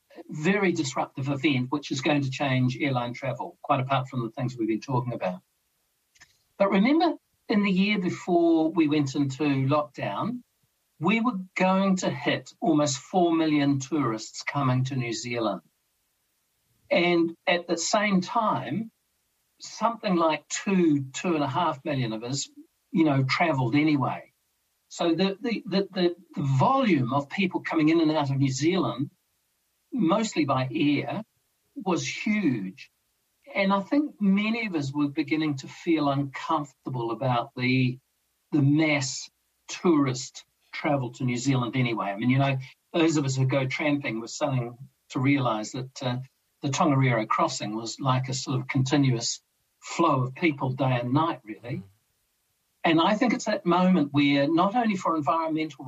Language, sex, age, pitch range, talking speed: English, male, 60-79, 130-175 Hz, 155 wpm